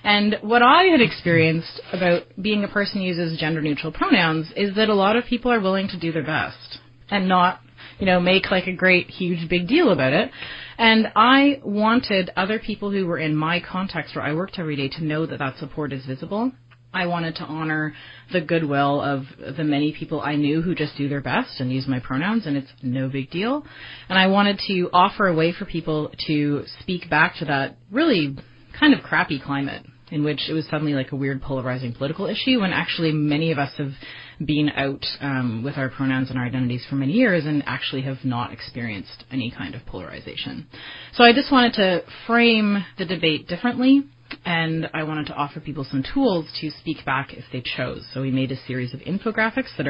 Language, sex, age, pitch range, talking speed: English, female, 30-49, 135-185 Hz, 210 wpm